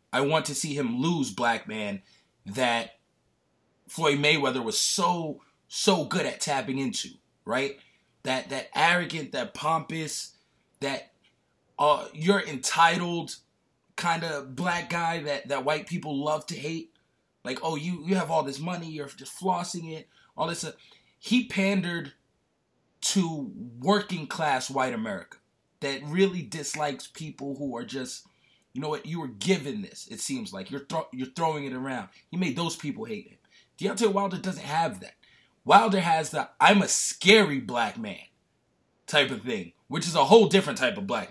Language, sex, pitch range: English, male, 145-195 Hz